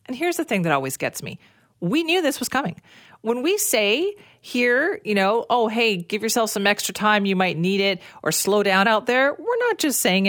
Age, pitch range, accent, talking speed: 40-59, 180-235 Hz, American, 225 wpm